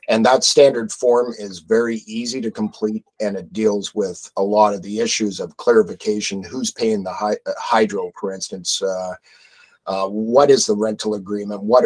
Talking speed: 170 wpm